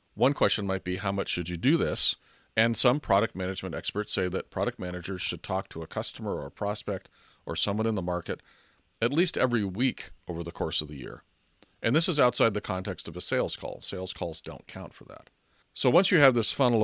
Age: 40-59